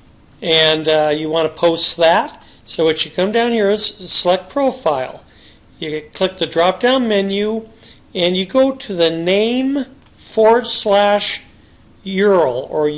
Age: 40-59